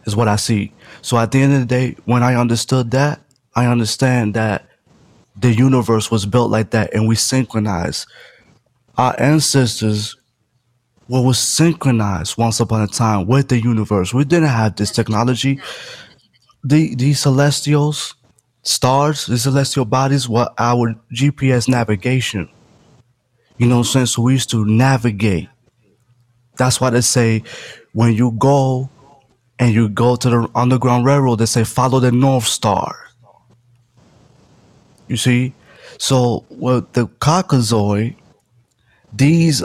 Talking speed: 140 wpm